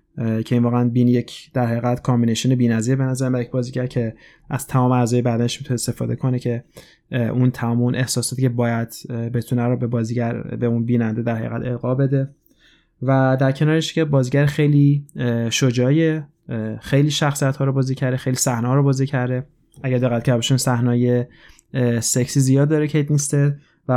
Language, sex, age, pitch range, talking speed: Persian, male, 20-39, 120-140 Hz, 175 wpm